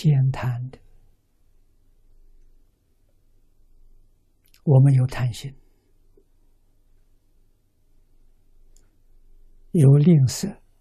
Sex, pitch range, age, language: male, 95-120 Hz, 60-79, Chinese